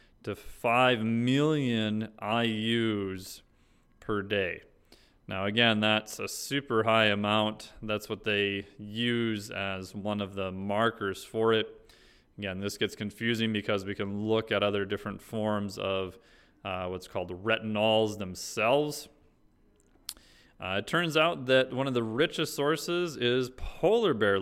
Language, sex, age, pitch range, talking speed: English, male, 30-49, 105-125 Hz, 135 wpm